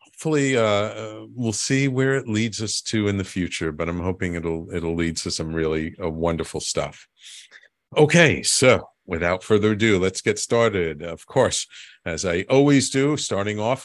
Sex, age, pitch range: male, 50-69, 95-140 Hz